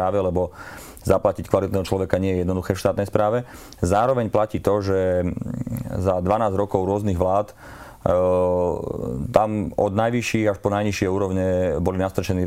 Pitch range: 90-100 Hz